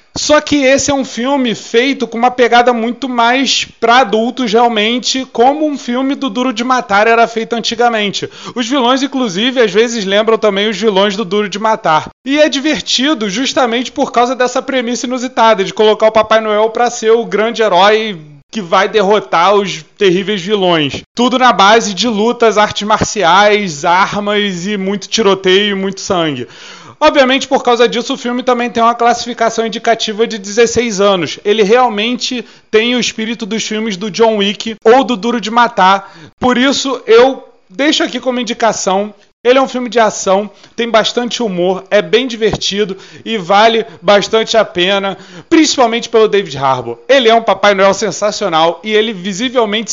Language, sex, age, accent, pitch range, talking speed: Portuguese, male, 30-49, Brazilian, 205-245 Hz, 170 wpm